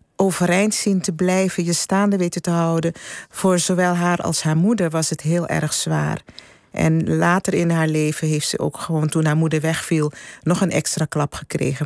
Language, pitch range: Dutch, 155-190 Hz